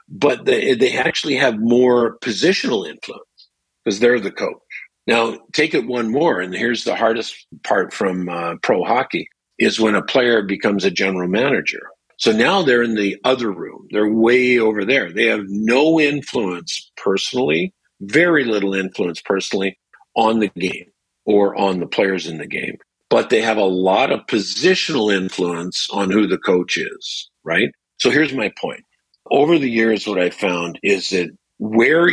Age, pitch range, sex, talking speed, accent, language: 50-69, 100-125 Hz, male, 170 wpm, American, English